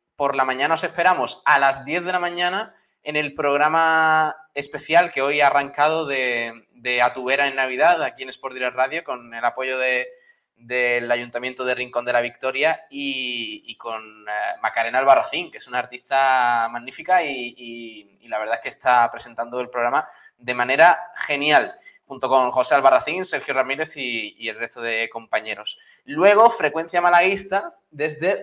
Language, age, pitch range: Spanish, 20-39, 125-160 Hz